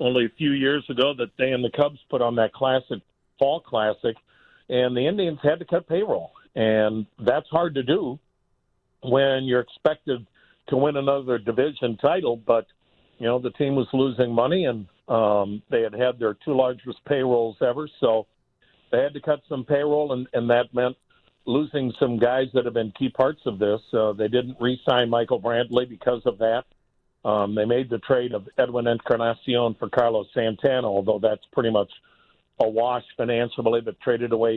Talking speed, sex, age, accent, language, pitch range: 180 wpm, male, 60-79, American, English, 115-140 Hz